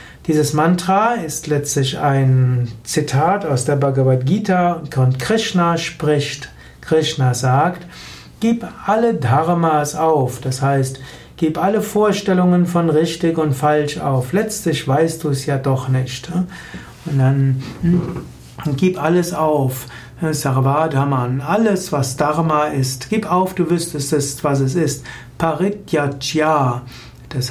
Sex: male